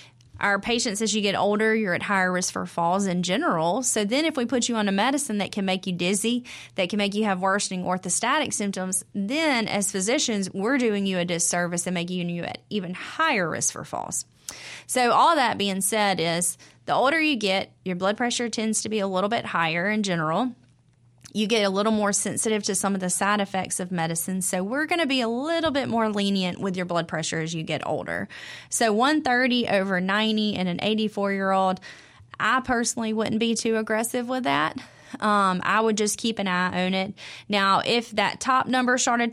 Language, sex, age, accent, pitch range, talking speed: English, female, 30-49, American, 185-230 Hz, 210 wpm